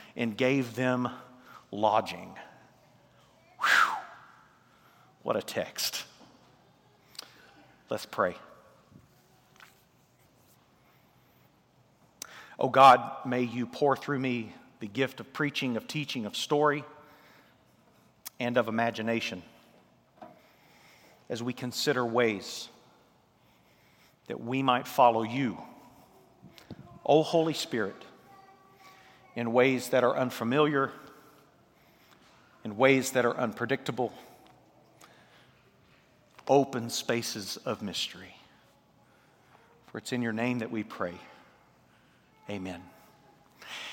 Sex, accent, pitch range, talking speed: male, American, 115-140 Hz, 85 wpm